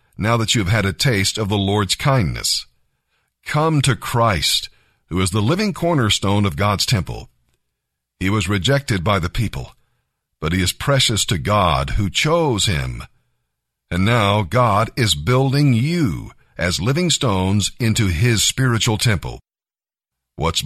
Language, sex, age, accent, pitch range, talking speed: English, male, 50-69, American, 95-130 Hz, 150 wpm